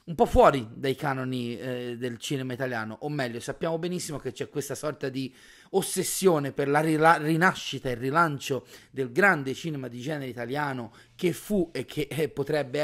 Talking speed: 175 wpm